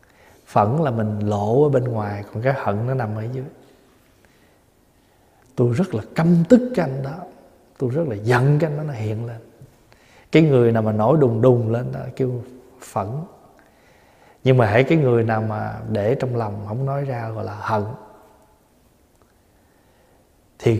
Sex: male